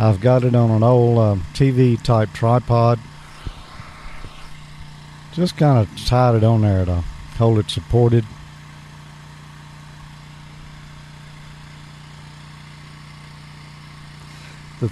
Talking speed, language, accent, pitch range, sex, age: 90 wpm, English, American, 90-135 Hz, male, 50-69